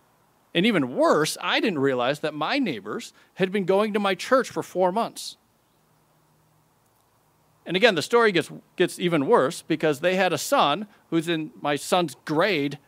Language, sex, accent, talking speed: English, male, American, 170 wpm